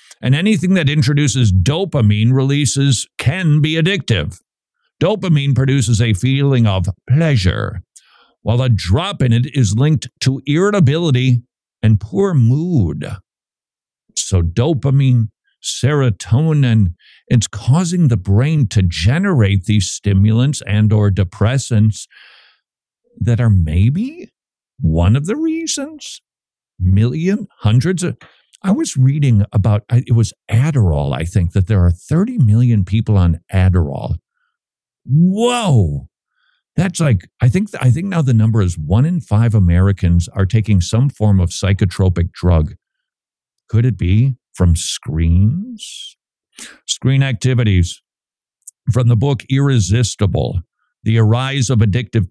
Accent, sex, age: American, male, 50-69